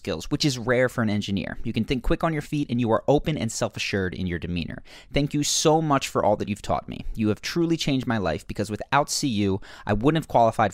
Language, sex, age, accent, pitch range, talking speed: English, male, 30-49, American, 105-140 Hz, 255 wpm